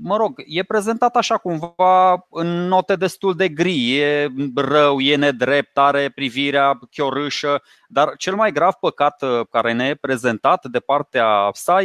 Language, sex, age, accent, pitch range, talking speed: Romanian, male, 20-39, native, 135-185 Hz, 150 wpm